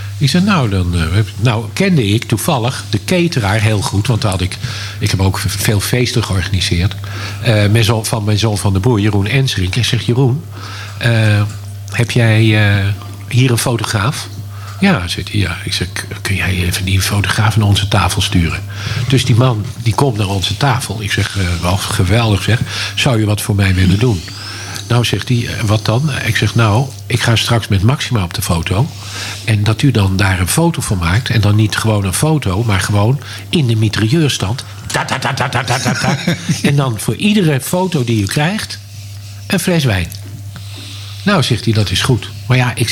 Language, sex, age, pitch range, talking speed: Dutch, male, 50-69, 100-125 Hz, 195 wpm